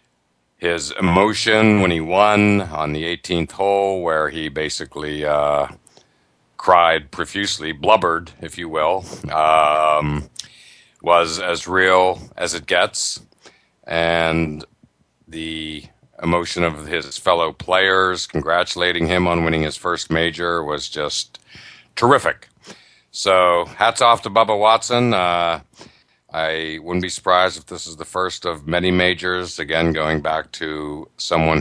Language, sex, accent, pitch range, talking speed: English, male, American, 75-90 Hz, 125 wpm